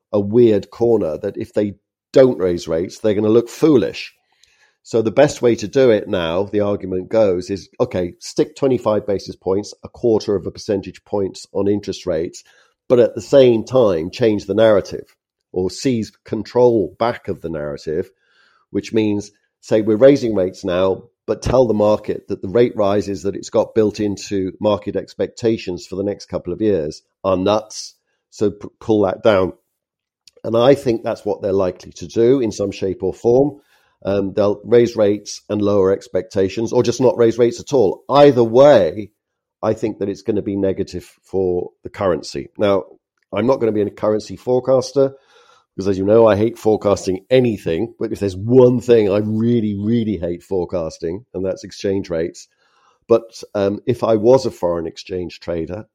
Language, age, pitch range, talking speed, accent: English, 50-69, 95-115 Hz, 180 wpm, British